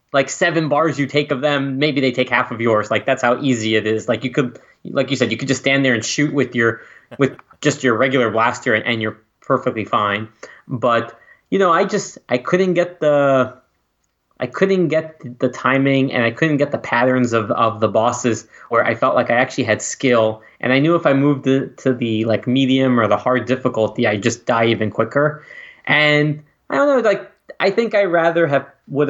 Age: 20-39